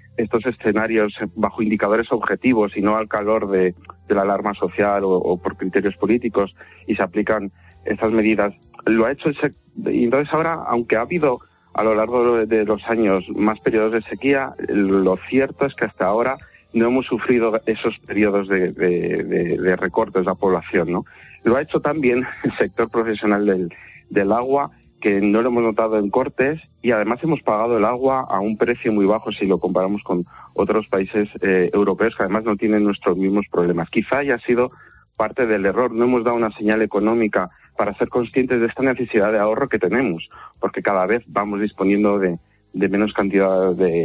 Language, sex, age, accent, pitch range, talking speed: Spanish, male, 40-59, Spanish, 100-120 Hz, 190 wpm